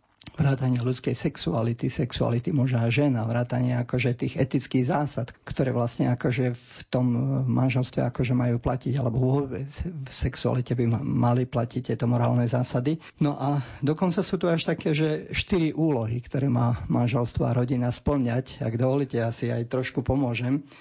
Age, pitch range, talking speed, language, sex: 50-69, 125-145 Hz, 155 wpm, Slovak, male